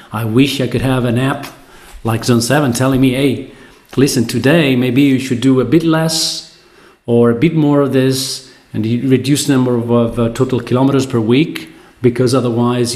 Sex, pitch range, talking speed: male, 110-125 Hz, 190 wpm